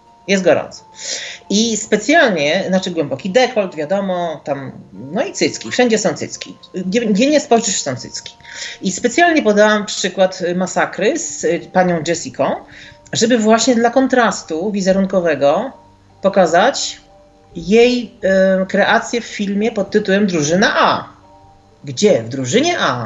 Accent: native